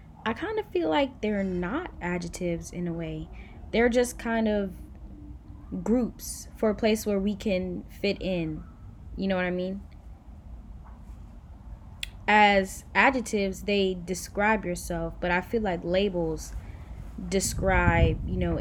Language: English